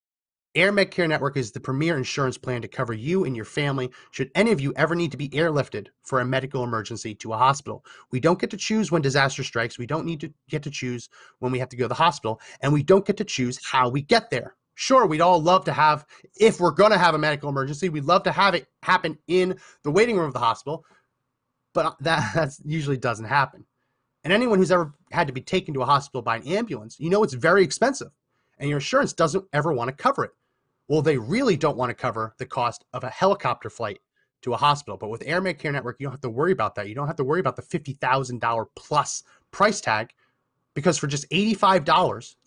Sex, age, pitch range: male, 30-49, 125-170 Hz